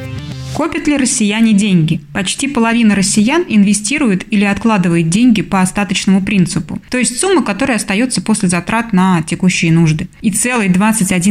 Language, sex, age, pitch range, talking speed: Russian, female, 20-39, 180-230 Hz, 140 wpm